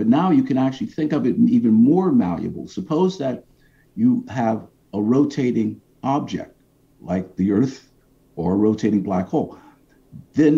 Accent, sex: American, male